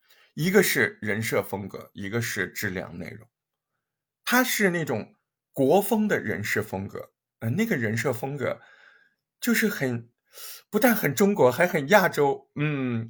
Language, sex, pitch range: Chinese, male, 120-195 Hz